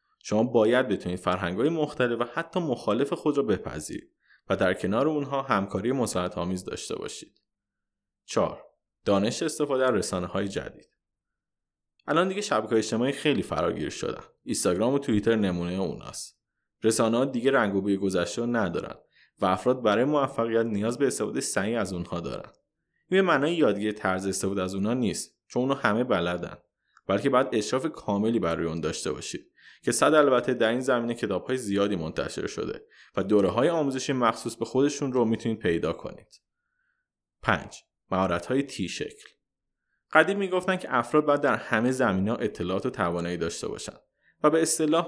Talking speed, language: 160 wpm, Persian